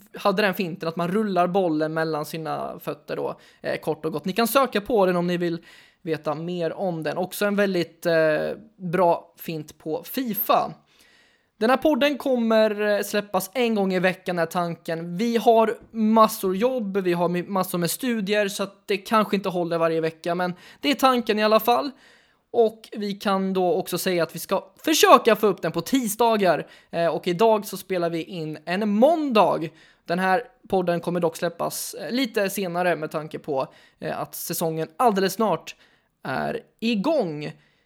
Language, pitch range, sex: Swedish, 175-235 Hz, male